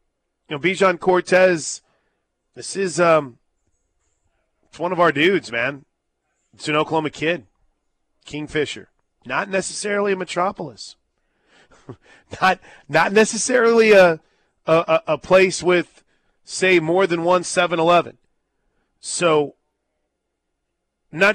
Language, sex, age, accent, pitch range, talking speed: English, male, 30-49, American, 125-180 Hz, 105 wpm